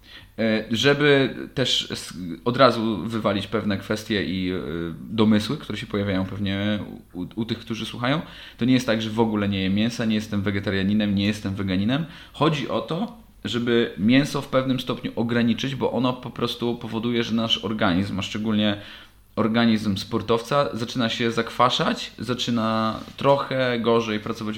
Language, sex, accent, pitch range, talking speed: Polish, male, native, 105-130 Hz, 150 wpm